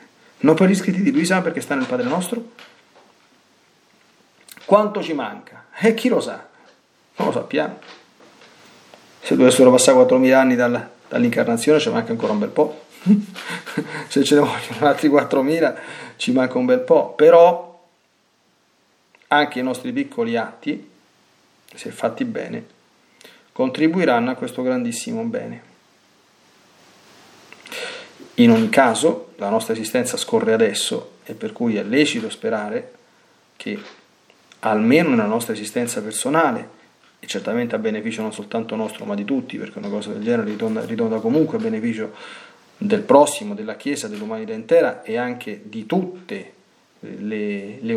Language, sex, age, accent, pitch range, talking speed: Italian, male, 40-59, native, 150-235 Hz, 135 wpm